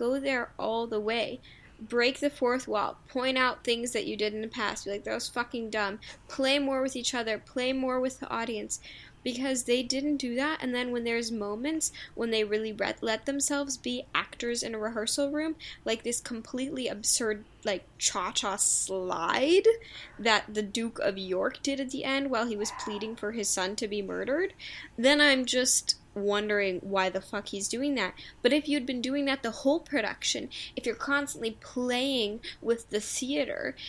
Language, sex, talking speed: English, female, 190 wpm